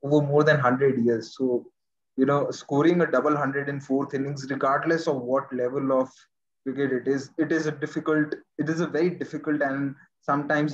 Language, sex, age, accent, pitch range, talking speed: English, male, 20-39, Indian, 130-160 Hz, 190 wpm